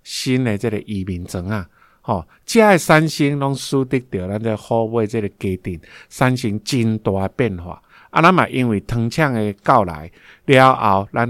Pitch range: 100-130 Hz